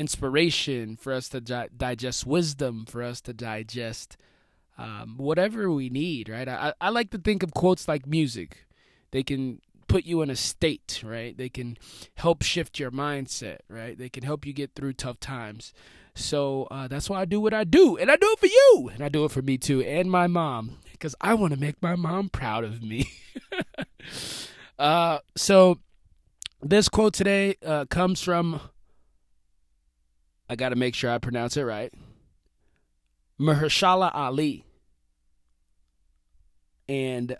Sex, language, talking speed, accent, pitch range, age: male, English, 165 wpm, American, 120-170 Hz, 20-39